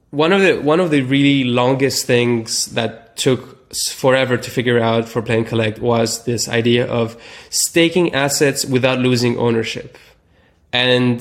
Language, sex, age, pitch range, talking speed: English, male, 20-39, 115-130 Hz, 150 wpm